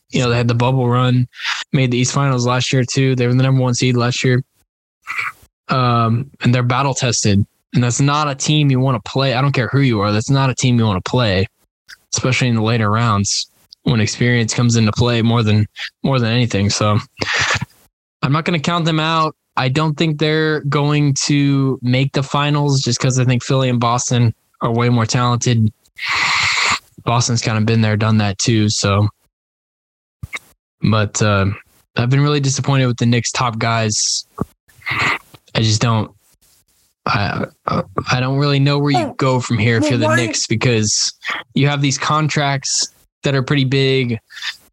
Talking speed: 185 wpm